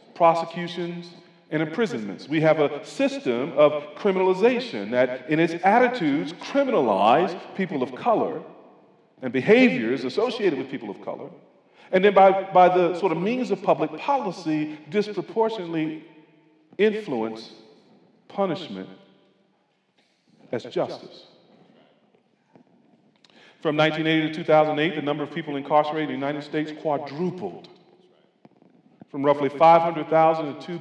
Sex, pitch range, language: male, 145-180 Hz, English